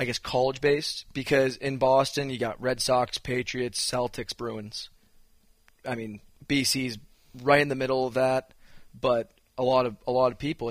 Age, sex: 20-39, male